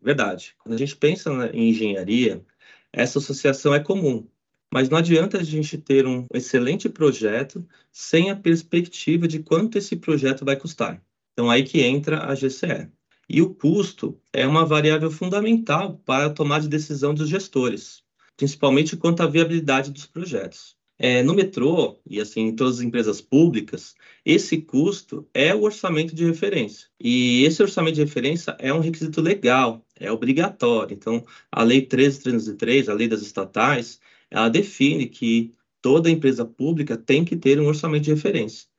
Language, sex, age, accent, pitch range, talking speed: Portuguese, male, 30-49, Brazilian, 130-160 Hz, 160 wpm